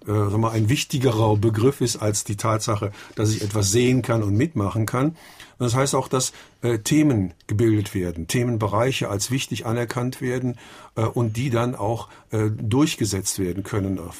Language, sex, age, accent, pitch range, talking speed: German, male, 50-69, German, 105-120 Hz, 180 wpm